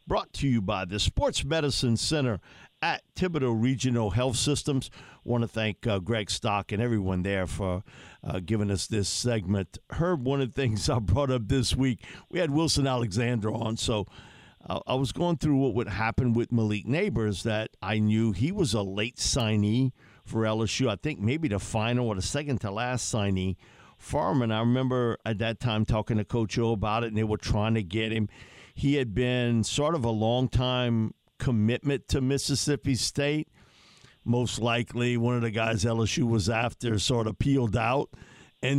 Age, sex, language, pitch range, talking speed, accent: 50-69, male, English, 110-135 Hz, 190 wpm, American